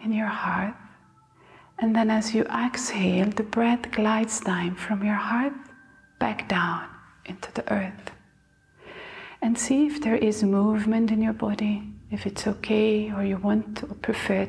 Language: English